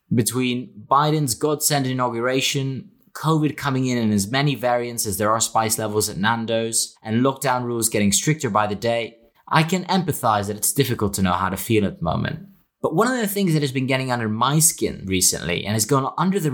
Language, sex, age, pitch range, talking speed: English, male, 20-39, 115-155 Hz, 210 wpm